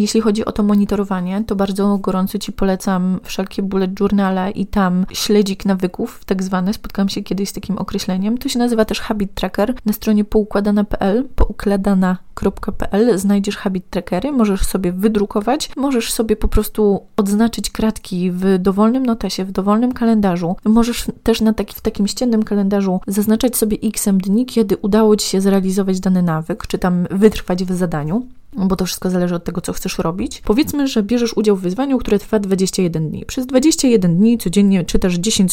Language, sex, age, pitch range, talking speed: Polish, female, 20-39, 190-220 Hz, 175 wpm